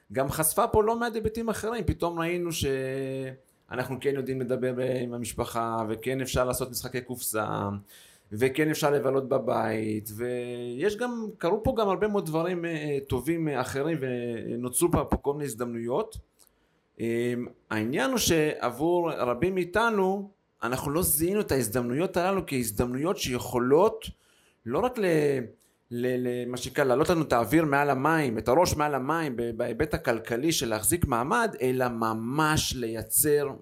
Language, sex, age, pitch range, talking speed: Hebrew, male, 30-49, 120-165 Hz, 130 wpm